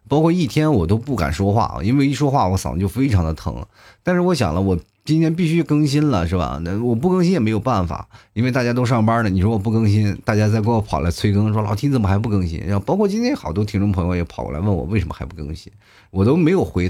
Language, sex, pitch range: Chinese, male, 95-130 Hz